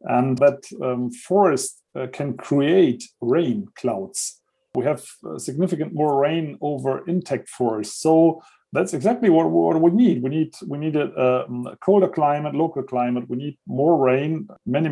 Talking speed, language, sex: 160 wpm, English, male